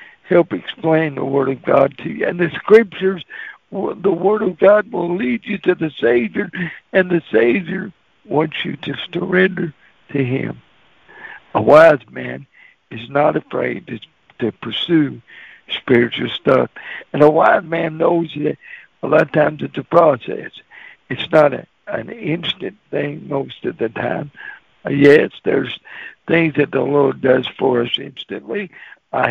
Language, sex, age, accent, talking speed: English, male, 60-79, American, 150 wpm